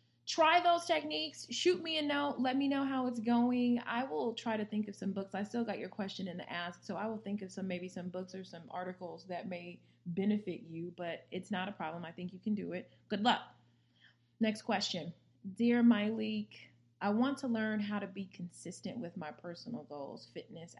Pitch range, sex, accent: 170-220 Hz, female, American